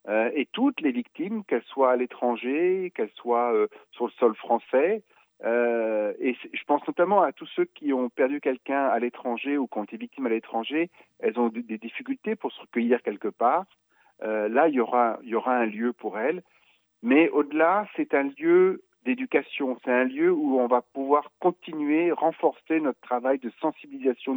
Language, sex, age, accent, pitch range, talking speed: Italian, male, 50-69, French, 120-175 Hz, 190 wpm